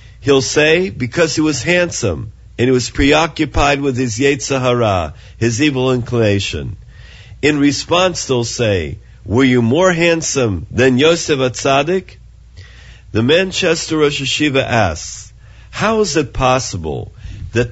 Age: 50-69